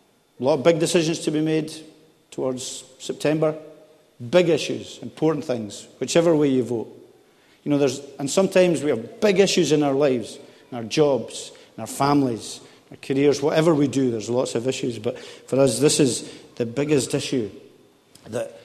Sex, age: male, 50-69